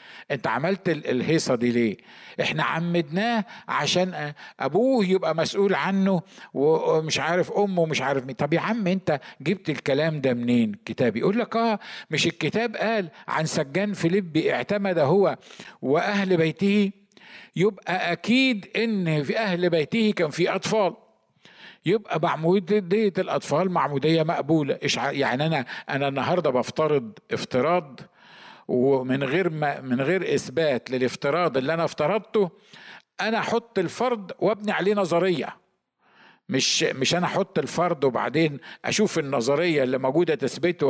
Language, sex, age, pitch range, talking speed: Arabic, male, 50-69, 150-210 Hz, 130 wpm